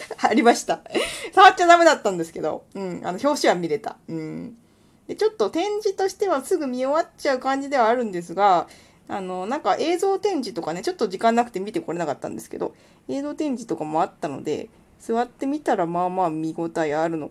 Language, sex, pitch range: Japanese, female, 170-275 Hz